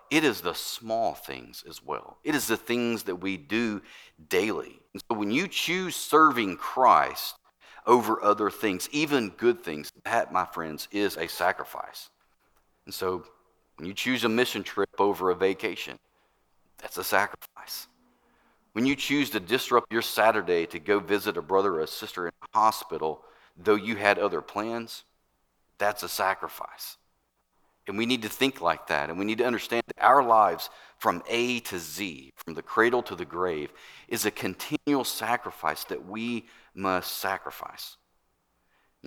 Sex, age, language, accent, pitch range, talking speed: male, 40-59, English, American, 95-120 Hz, 165 wpm